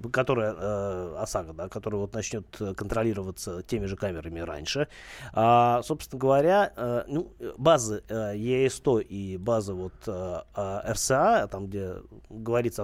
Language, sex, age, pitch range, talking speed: Russian, male, 30-49, 100-130 Hz, 135 wpm